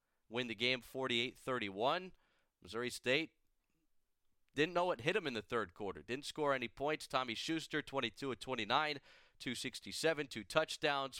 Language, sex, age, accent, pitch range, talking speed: English, male, 40-59, American, 115-150 Hz, 135 wpm